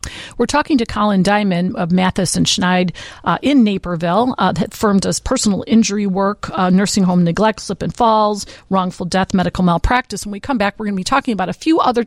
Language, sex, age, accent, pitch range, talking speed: English, female, 40-59, American, 190-245 Hz, 215 wpm